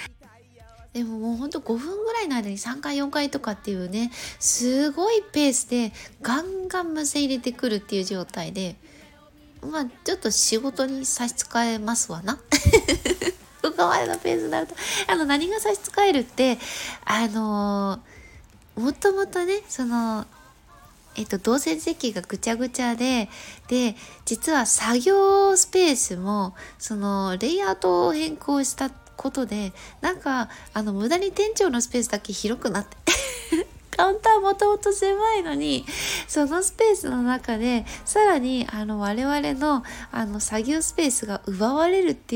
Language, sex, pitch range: Japanese, female, 220-340 Hz